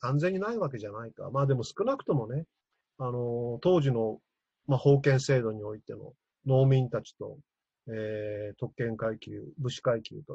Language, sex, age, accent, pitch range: Japanese, male, 40-59, native, 120-150 Hz